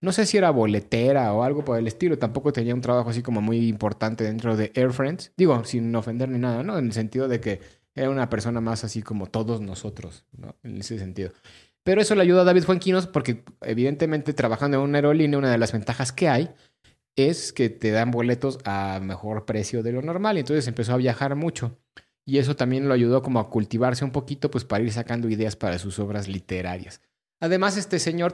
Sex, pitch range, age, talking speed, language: male, 115-155 Hz, 30-49, 215 wpm, Spanish